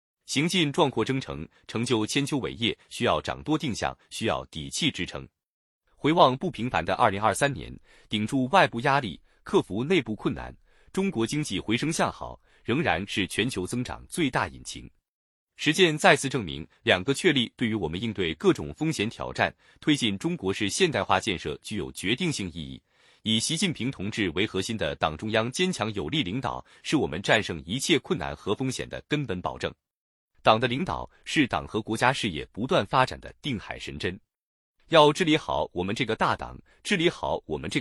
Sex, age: male, 30-49